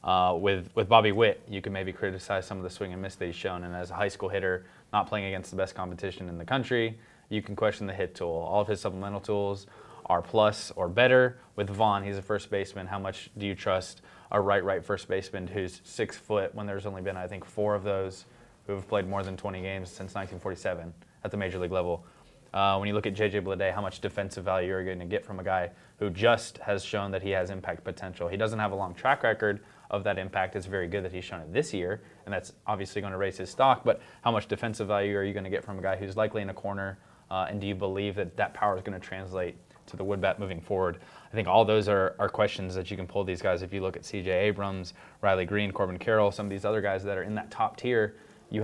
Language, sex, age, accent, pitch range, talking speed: English, male, 20-39, American, 95-105 Hz, 265 wpm